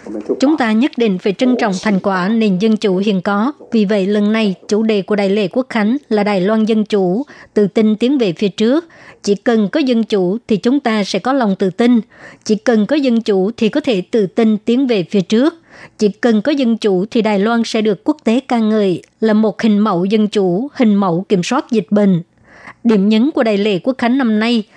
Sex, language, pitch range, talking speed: male, Vietnamese, 210-240 Hz, 235 wpm